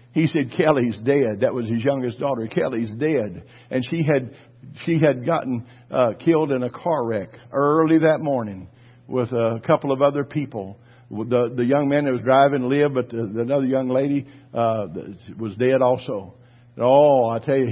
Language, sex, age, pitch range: English, male, 50-69, 115-140 Hz